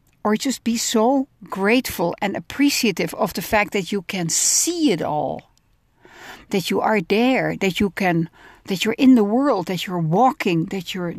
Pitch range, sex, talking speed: 185-270 Hz, female, 175 wpm